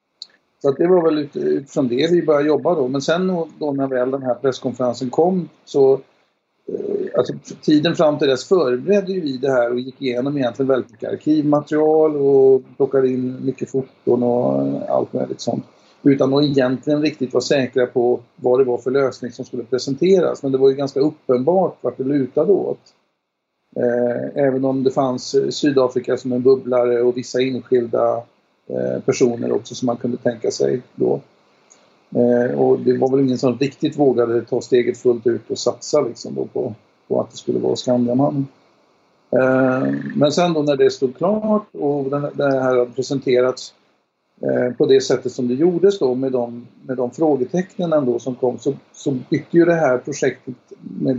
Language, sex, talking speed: Swedish, male, 170 wpm